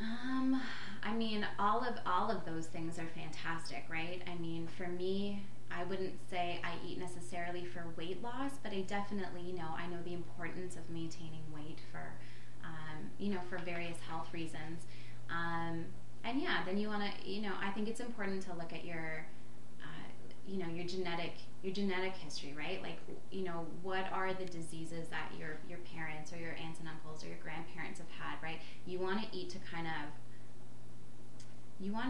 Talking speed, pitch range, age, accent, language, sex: 190 wpm, 160-190 Hz, 20-39, American, English, female